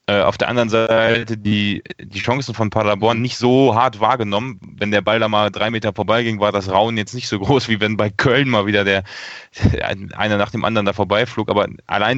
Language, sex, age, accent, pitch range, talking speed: German, male, 30-49, German, 105-120 Hz, 220 wpm